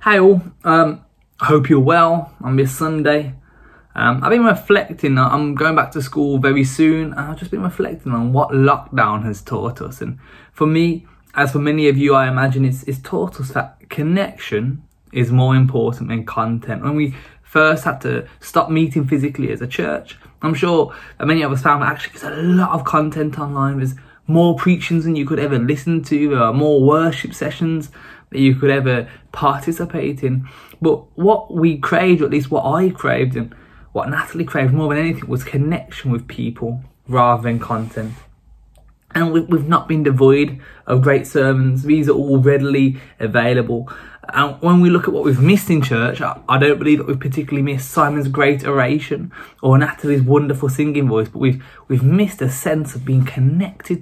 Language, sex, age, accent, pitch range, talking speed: English, male, 20-39, British, 130-160 Hz, 185 wpm